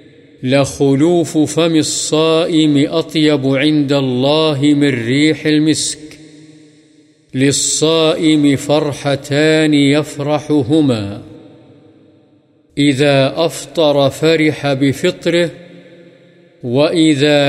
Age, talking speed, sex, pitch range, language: 50-69, 60 wpm, male, 135-155 Hz, Urdu